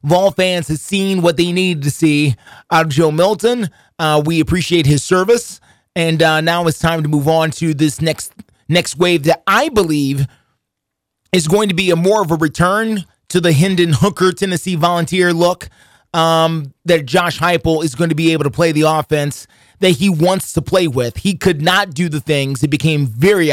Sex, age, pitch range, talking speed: male, 30-49, 150-175 Hz, 200 wpm